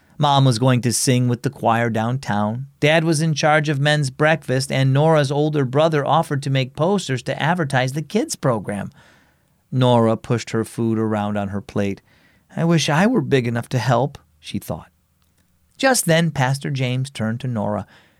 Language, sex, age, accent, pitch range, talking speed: English, male, 40-59, American, 110-170 Hz, 180 wpm